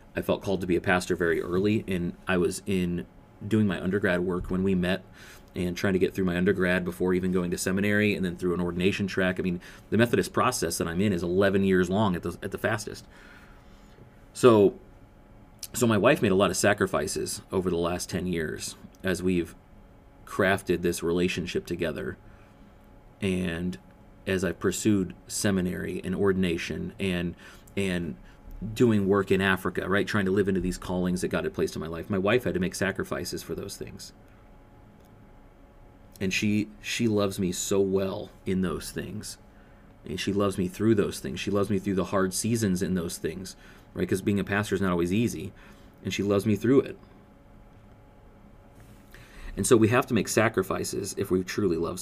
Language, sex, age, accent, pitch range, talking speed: English, male, 30-49, American, 90-100 Hz, 190 wpm